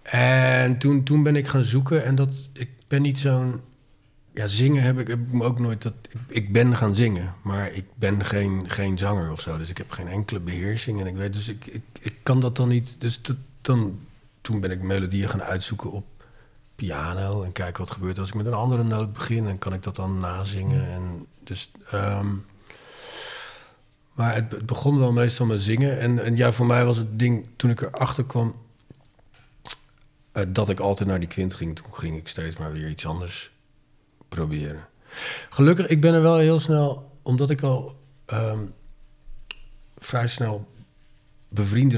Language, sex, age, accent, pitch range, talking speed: Dutch, male, 40-59, Dutch, 100-130 Hz, 195 wpm